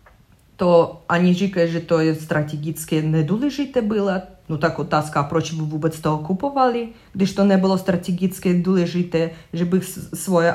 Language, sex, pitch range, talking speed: Czech, female, 165-200 Hz, 150 wpm